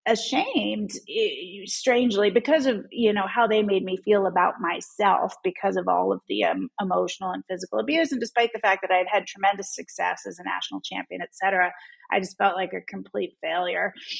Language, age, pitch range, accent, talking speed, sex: English, 30-49, 185-215 Hz, American, 190 wpm, female